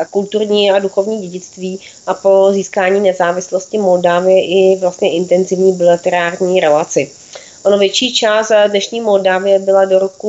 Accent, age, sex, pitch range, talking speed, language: native, 30-49, female, 180-200 Hz, 130 wpm, Czech